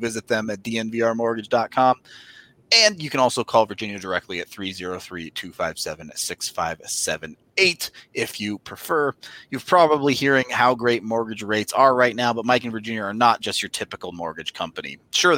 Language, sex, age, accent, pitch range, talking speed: English, male, 30-49, American, 105-135 Hz, 155 wpm